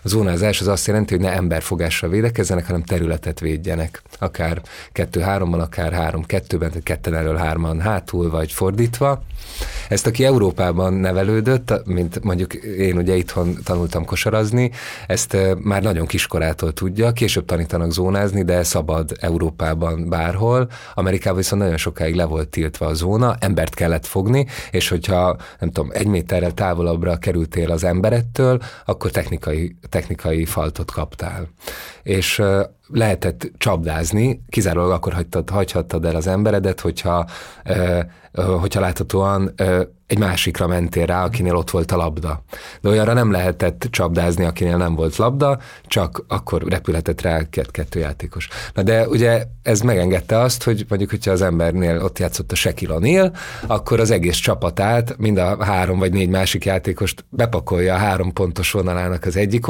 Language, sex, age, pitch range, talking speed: Hungarian, male, 30-49, 85-105 Hz, 150 wpm